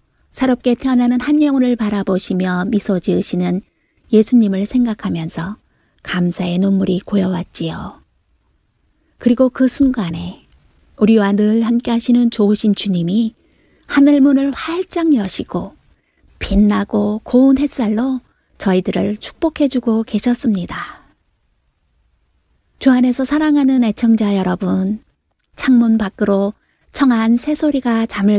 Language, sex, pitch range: Korean, female, 190-245 Hz